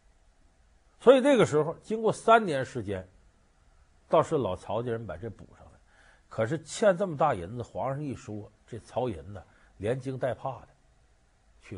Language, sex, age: Chinese, male, 50-69